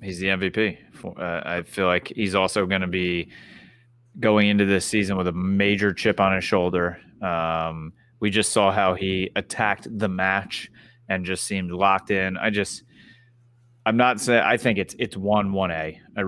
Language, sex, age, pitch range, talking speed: English, male, 30-49, 90-105 Hz, 185 wpm